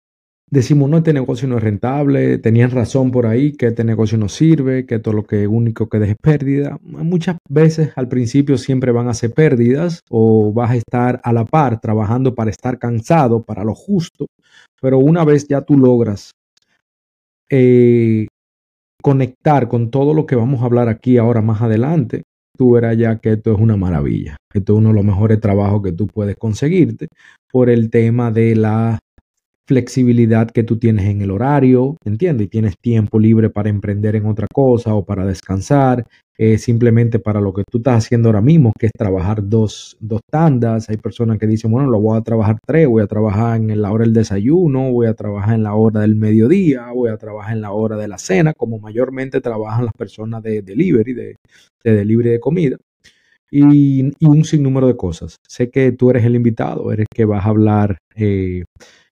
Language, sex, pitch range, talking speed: Spanish, male, 110-130 Hz, 195 wpm